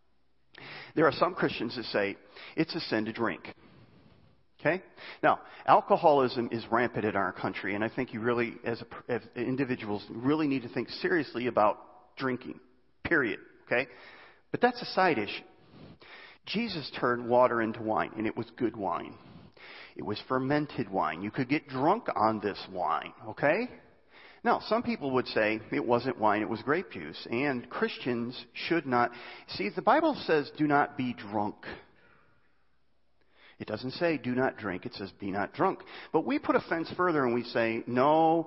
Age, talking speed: 40-59, 170 wpm